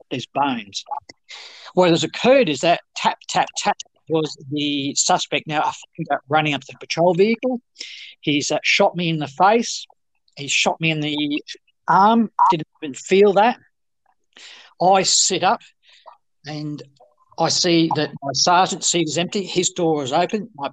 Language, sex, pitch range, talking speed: English, male, 145-180 Hz, 160 wpm